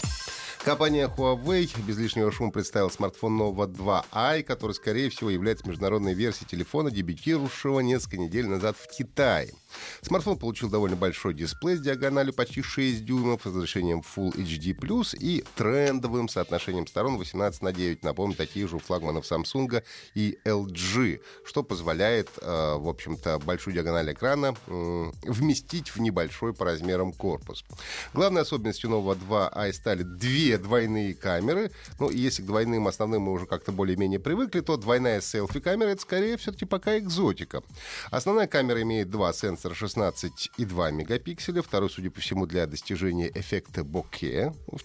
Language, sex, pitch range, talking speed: Russian, male, 95-140 Hz, 145 wpm